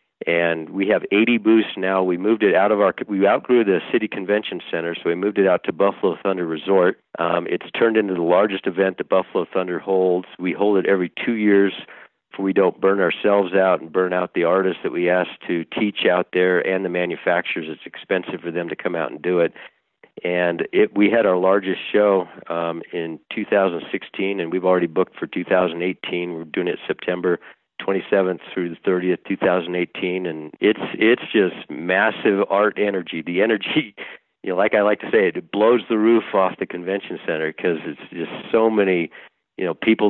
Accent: American